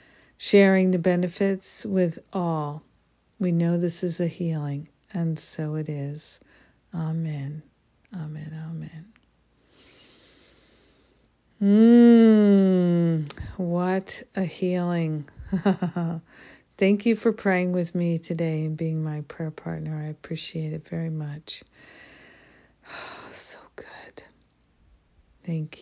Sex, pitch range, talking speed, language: female, 160-195 Hz, 100 wpm, English